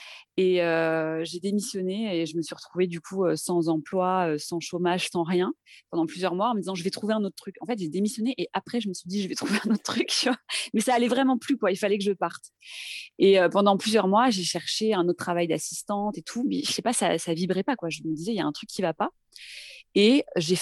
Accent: French